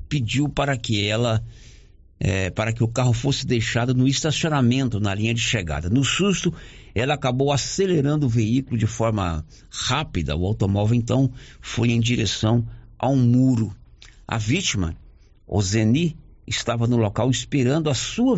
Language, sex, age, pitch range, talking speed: Portuguese, male, 60-79, 95-125 Hz, 145 wpm